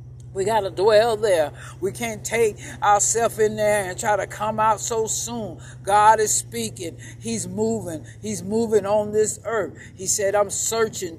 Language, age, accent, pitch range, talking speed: English, 60-79, American, 200-230 Hz, 170 wpm